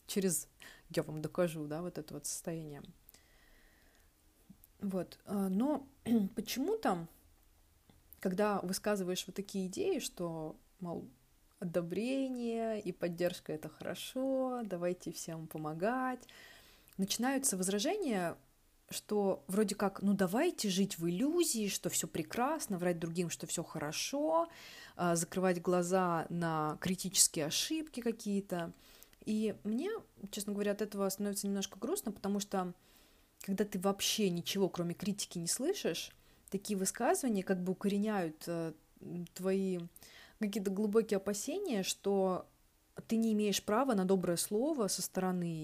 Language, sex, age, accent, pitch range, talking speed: Russian, female, 20-39, native, 175-215 Hz, 115 wpm